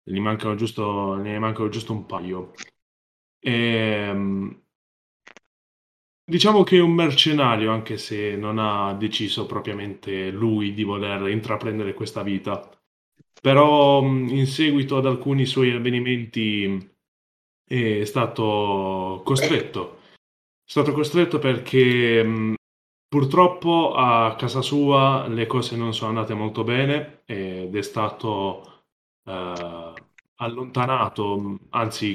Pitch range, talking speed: 105-135 Hz, 105 wpm